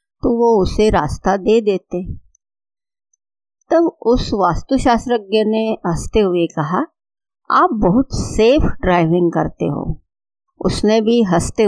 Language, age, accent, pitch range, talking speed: Hindi, 50-69, native, 180-260 Hz, 115 wpm